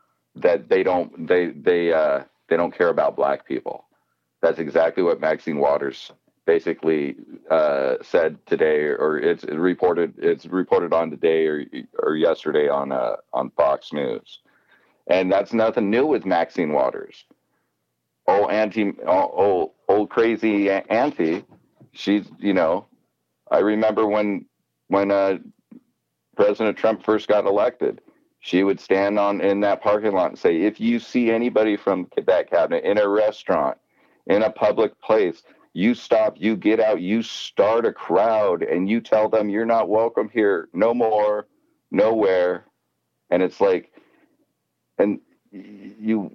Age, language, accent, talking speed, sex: 40-59, English, American, 145 wpm, male